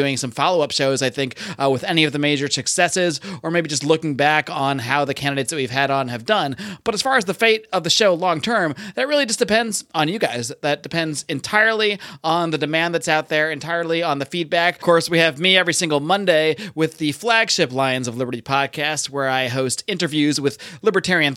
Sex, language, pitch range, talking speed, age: male, English, 140-180 Hz, 220 wpm, 30-49